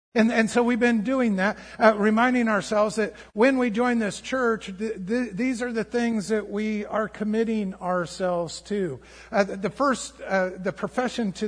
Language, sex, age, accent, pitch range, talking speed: English, male, 50-69, American, 180-220 Hz, 185 wpm